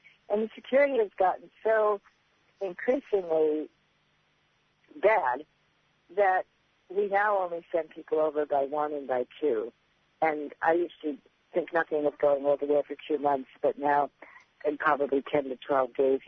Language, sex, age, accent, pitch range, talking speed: English, female, 60-79, American, 150-210 Hz, 150 wpm